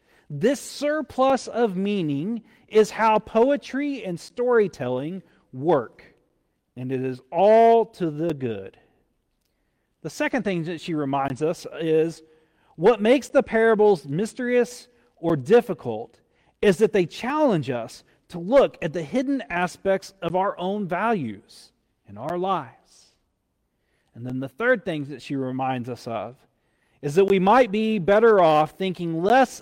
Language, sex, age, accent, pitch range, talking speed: English, male, 40-59, American, 150-225 Hz, 140 wpm